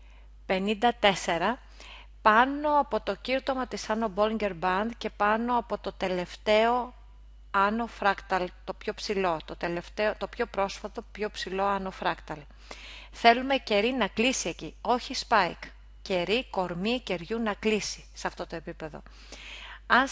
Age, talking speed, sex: 30-49, 275 wpm, female